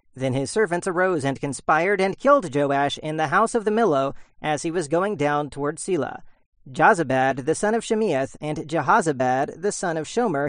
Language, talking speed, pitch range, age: English, 190 wpm, 140-195 Hz, 40-59